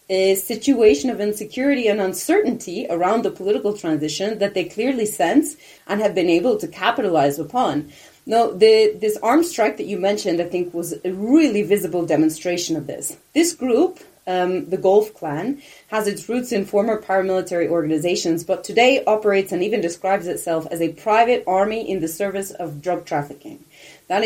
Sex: female